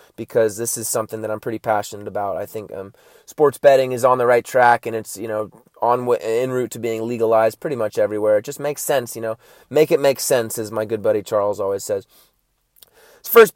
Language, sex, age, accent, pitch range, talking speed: English, male, 20-39, American, 120-175 Hz, 225 wpm